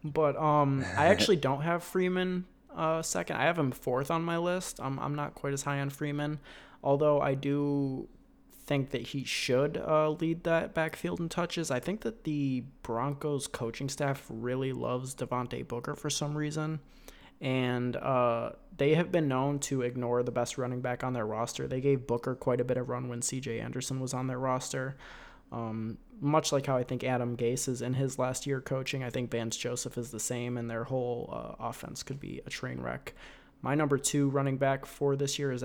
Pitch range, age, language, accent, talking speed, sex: 125-145 Hz, 20-39, English, American, 205 wpm, male